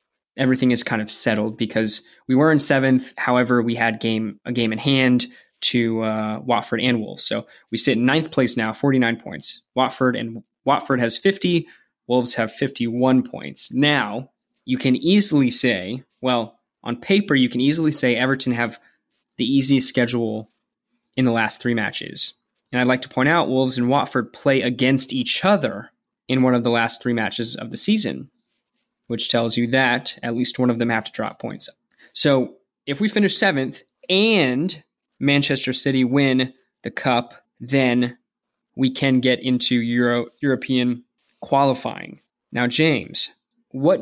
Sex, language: male, English